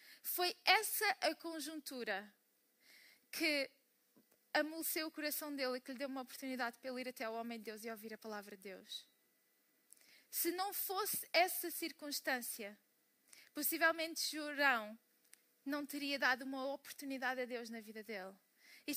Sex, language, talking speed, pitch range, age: female, Portuguese, 150 wpm, 245-310 Hz, 20-39